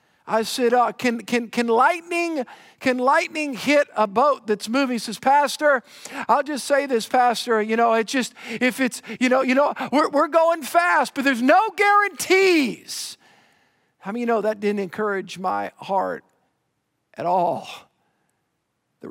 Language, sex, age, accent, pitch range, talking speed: English, male, 50-69, American, 195-255 Hz, 165 wpm